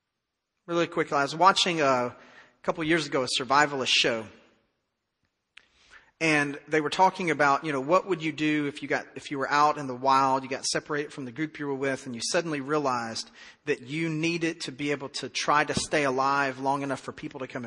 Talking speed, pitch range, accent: 220 wpm, 145-185 Hz, American